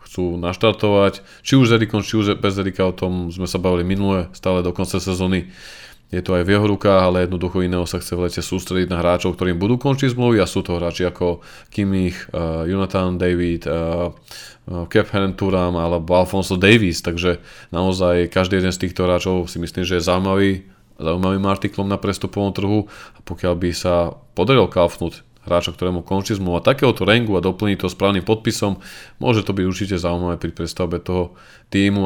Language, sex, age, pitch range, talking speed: Slovak, male, 20-39, 85-95 Hz, 185 wpm